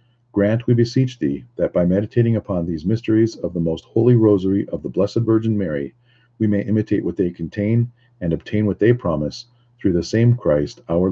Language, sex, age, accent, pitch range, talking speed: English, male, 50-69, American, 95-120 Hz, 195 wpm